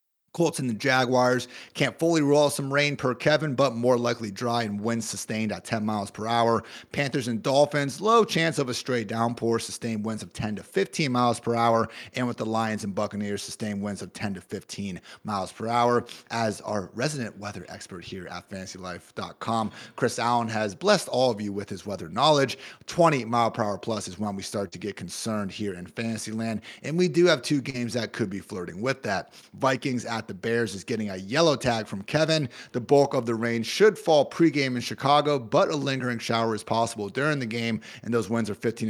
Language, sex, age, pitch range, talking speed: English, male, 30-49, 105-130 Hz, 210 wpm